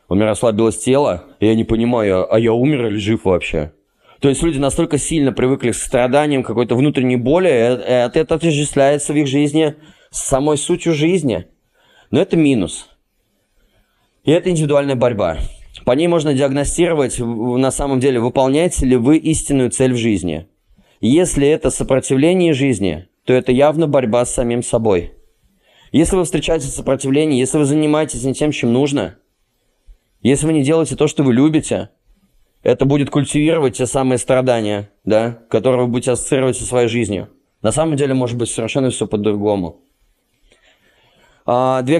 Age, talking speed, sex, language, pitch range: 20-39, 160 wpm, male, Russian, 120-150 Hz